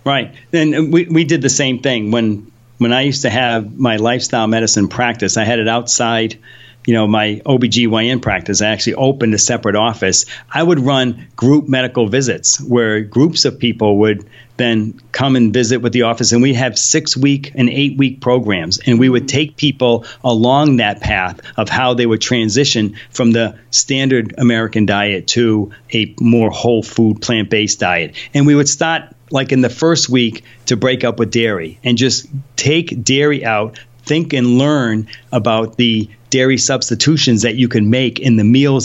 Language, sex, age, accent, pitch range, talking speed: English, male, 40-59, American, 115-135 Hz, 180 wpm